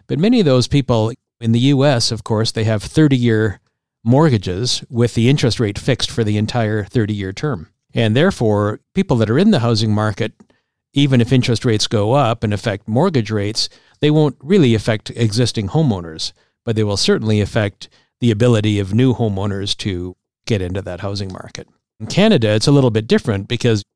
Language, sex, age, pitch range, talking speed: English, male, 50-69, 100-120 Hz, 185 wpm